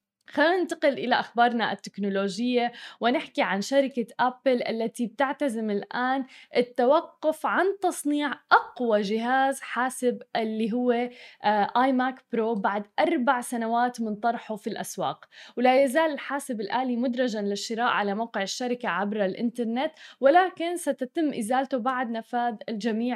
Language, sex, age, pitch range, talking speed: Arabic, female, 10-29, 220-260 Hz, 125 wpm